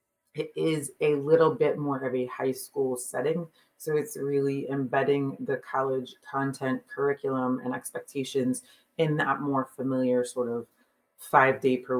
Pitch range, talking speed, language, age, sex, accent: 125-155 Hz, 150 wpm, English, 30-49, female, American